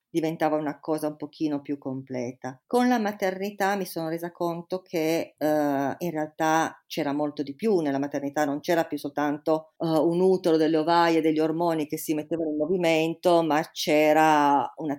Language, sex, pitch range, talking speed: Italian, female, 145-165 Hz, 165 wpm